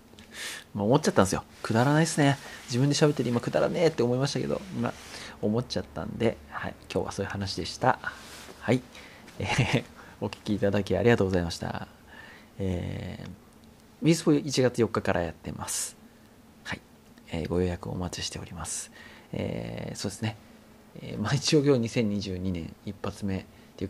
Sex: male